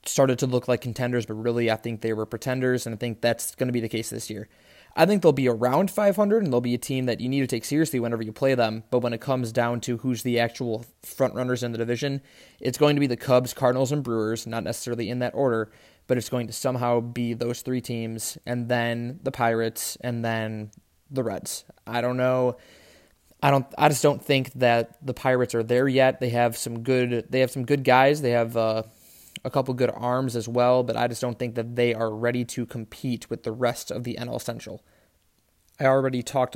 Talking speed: 240 wpm